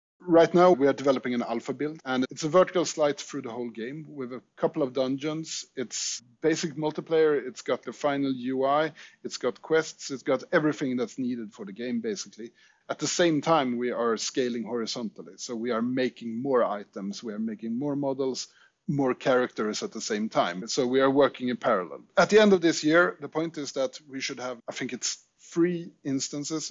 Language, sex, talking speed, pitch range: English, male, 205 wpm, 120-160 Hz